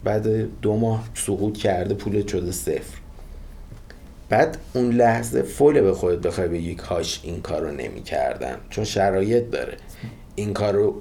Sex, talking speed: male, 130 wpm